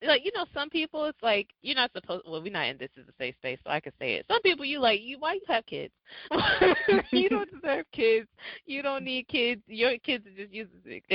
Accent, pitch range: American, 155-235 Hz